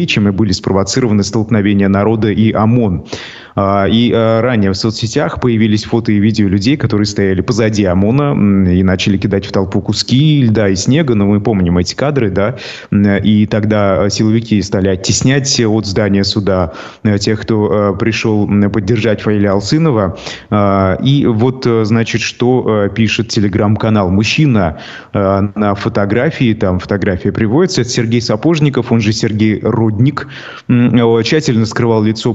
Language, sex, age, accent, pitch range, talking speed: Russian, male, 30-49, native, 105-120 Hz, 135 wpm